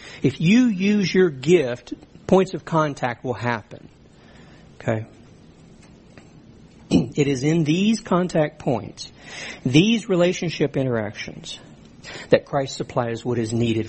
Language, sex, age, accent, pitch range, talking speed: English, male, 60-79, American, 130-180 Hz, 110 wpm